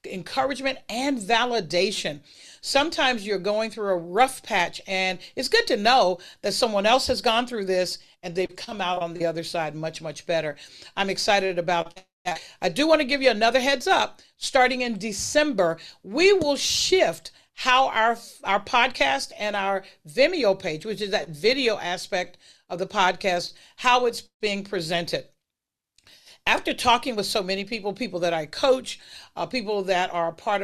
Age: 50-69